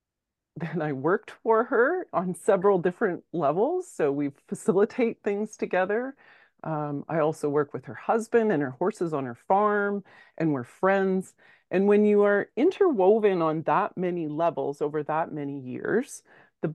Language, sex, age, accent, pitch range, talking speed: English, female, 40-59, American, 145-200 Hz, 160 wpm